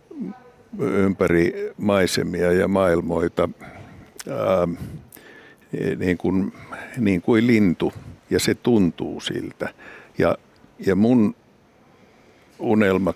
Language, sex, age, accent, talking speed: Finnish, male, 60-79, native, 80 wpm